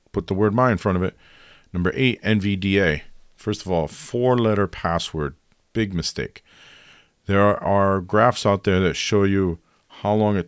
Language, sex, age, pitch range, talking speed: English, male, 40-59, 85-105 Hz, 180 wpm